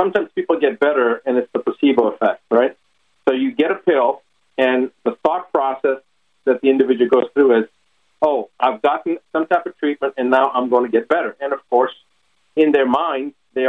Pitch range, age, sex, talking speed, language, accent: 120-165 Hz, 50-69, male, 200 wpm, English, American